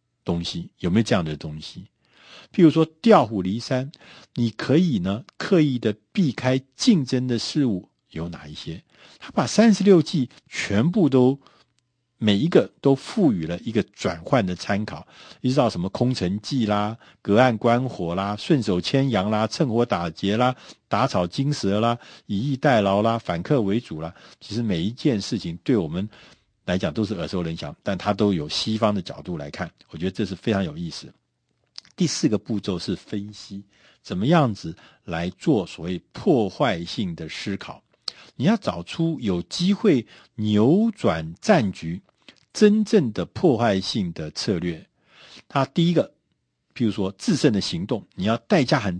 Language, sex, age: Chinese, male, 50-69